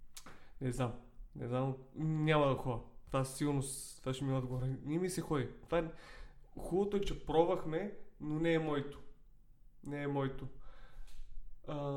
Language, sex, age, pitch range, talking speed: Bulgarian, male, 20-39, 125-150 Hz, 145 wpm